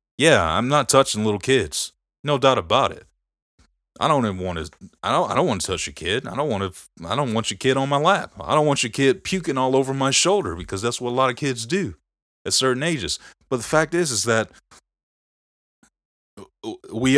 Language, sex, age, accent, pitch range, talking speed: English, male, 30-49, American, 100-125 Hz, 225 wpm